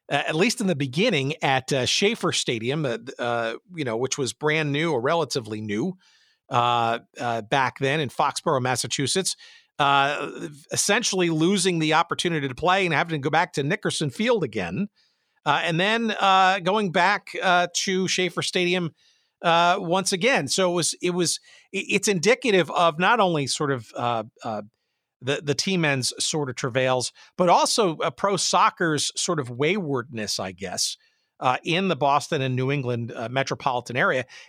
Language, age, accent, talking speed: English, 50-69, American, 170 wpm